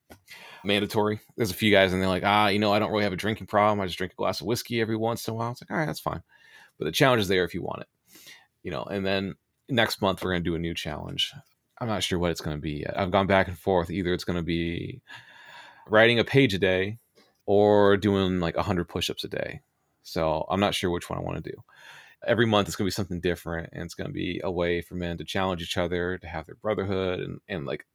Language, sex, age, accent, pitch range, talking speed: English, male, 30-49, American, 90-105 Hz, 260 wpm